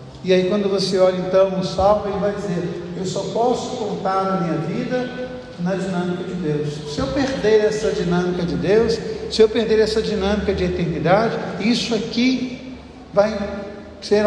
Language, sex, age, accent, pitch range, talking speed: Portuguese, male, 60-79, Brazilian, 165-210 Hz, 170 wpm